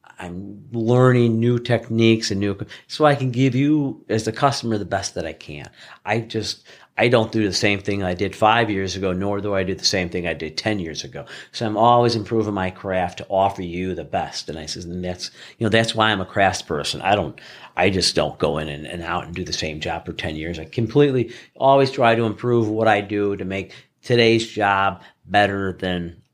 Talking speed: 230 wpm